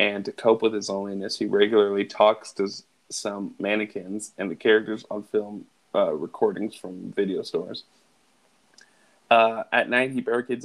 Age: 20-39